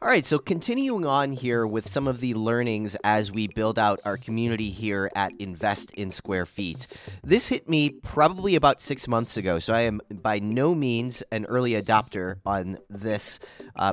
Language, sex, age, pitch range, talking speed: English, male, 30-49, 110-140 Hz, 185 wpm